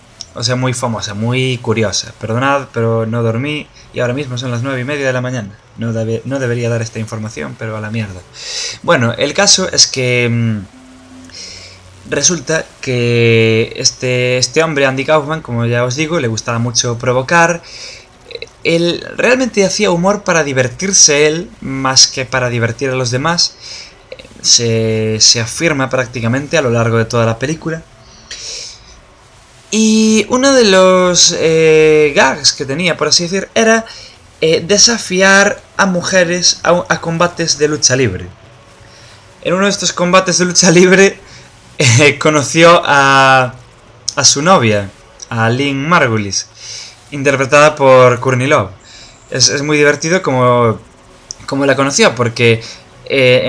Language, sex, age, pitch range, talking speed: English, male, 20-39, 115-165 Hz, 145 wpm